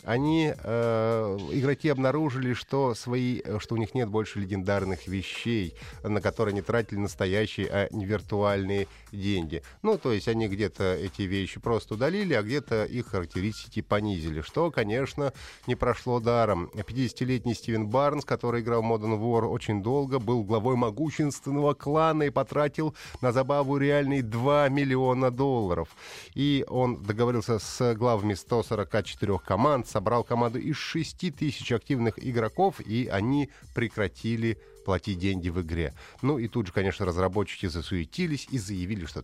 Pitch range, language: 100-130 Hz, Russian